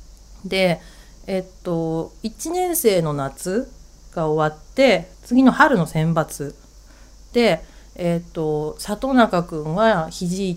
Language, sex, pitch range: Japanese, female, 155-220 Hz